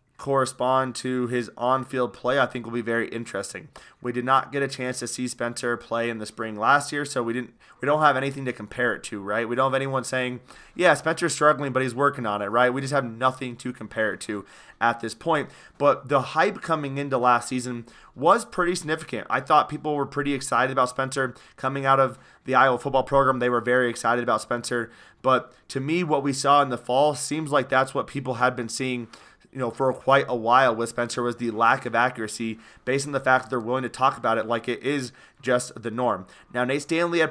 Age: 30-49